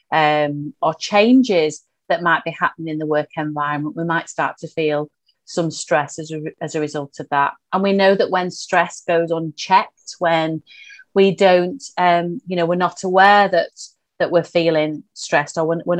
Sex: female